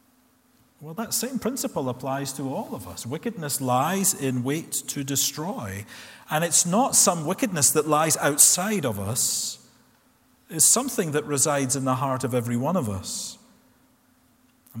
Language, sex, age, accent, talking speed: English, male, 40-59, British, 155 wpm